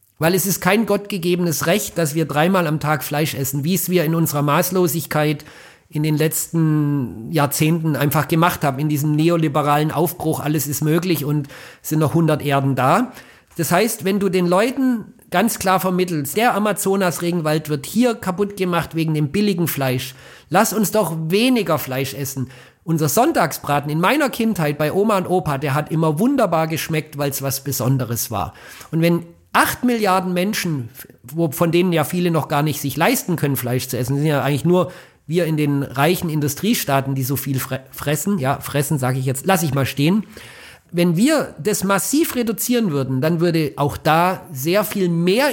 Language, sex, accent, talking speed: German, male, German, 185 wpm